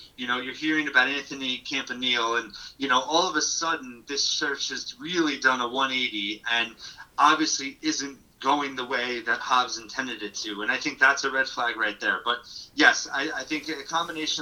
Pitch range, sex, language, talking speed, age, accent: 125-150 Hz, male, English, 200 wpm, 30-49, American